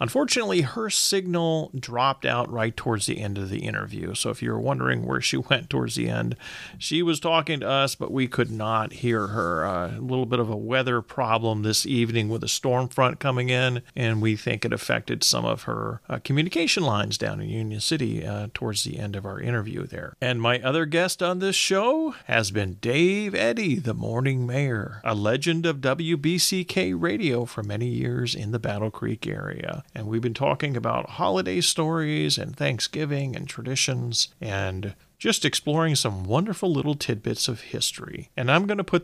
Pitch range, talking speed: 110-155 Hz, 190 wpm